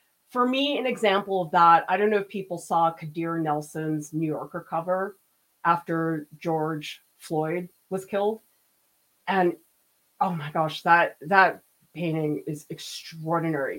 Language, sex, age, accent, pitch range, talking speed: English, female, 30-49, American, 155-200 Hz, 135 wpm